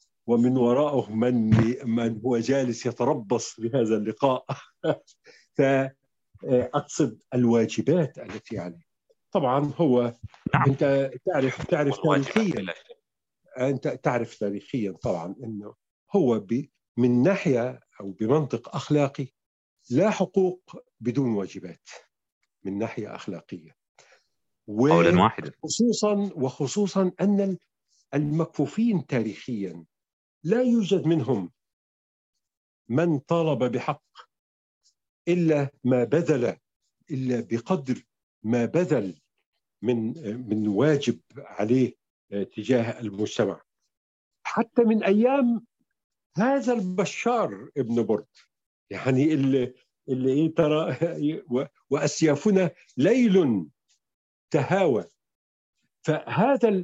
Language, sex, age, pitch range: Arabic, male, 50-69, 115-175 Hz